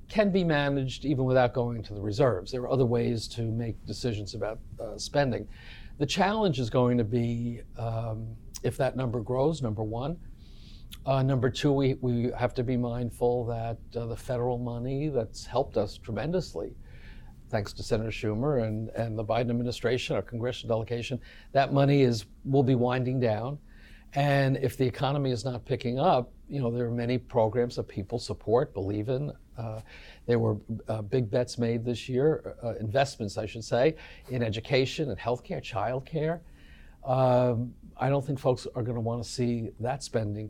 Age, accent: 60-79, American